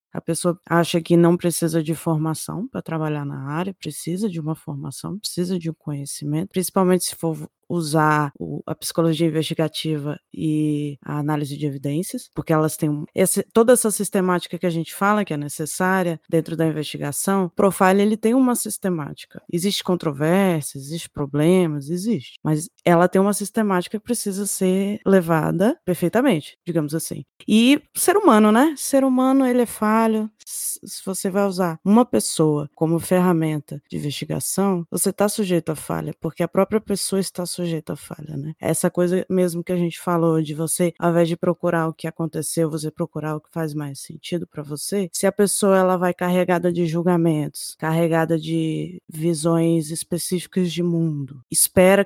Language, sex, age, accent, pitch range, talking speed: Portuguese, female, 20-39, Brazilian, 160-195 Hz, 165 wpm